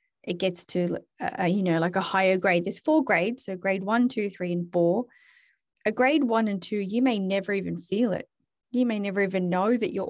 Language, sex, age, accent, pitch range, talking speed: English, female, 20-39, Australian, 180-225 Hz, 225 wpm